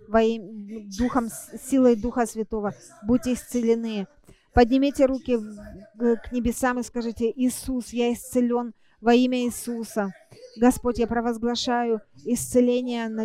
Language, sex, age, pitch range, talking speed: English, female, 30-49, 220-245 Hz, 105 wpm